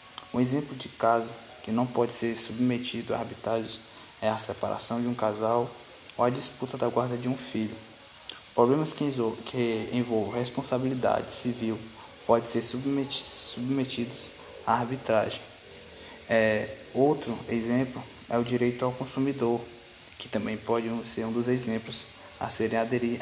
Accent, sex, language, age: Brazilian, male, Portuguese, 20-39